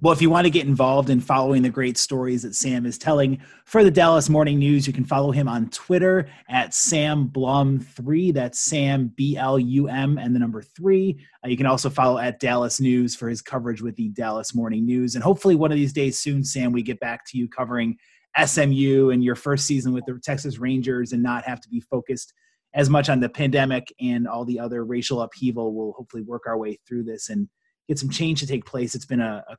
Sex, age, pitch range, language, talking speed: male, 30-49, 125-150 Hz, English, 235 wpm